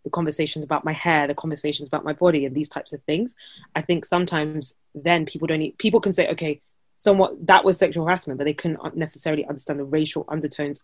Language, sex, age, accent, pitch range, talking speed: English, female, 20-39, British, 150-180 Hz, 215 wpm